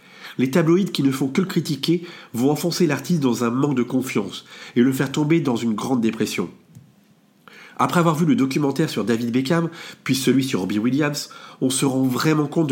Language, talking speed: French, 200 wpm